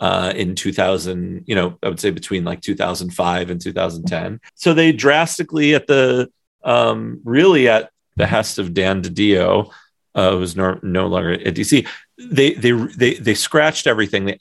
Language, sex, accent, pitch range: English, male, American, 100-150 Hz